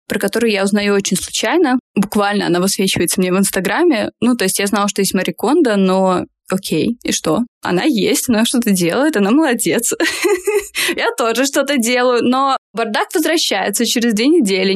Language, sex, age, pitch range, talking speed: Russian, female, 20-39, 195-265 Hz, 165 wpm